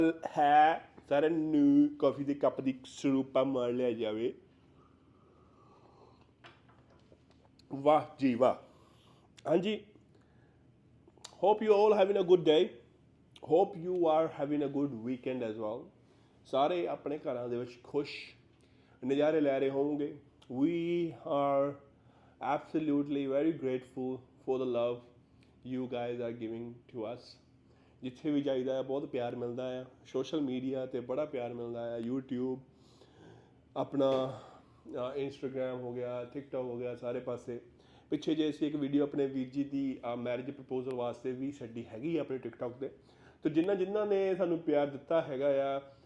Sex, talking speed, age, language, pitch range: male, 135 wpm, 30-49, Punjabi, 125-145 Hz